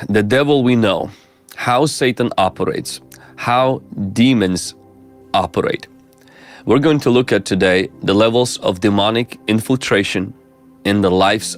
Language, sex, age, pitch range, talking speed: English, male, 30-49, 95-120 Hz, 125 wpm